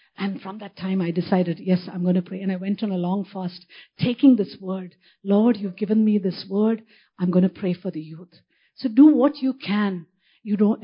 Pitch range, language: 185-230 Hz, English